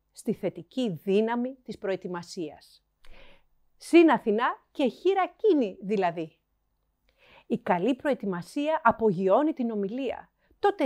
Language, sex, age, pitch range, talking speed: Greek, female, 40-59, 190-270 Hz, 95 wpm